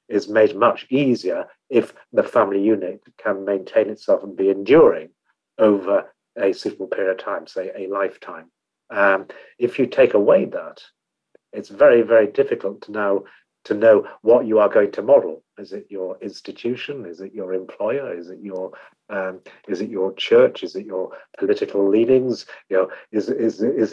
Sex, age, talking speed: male, 50-69, 175 wpm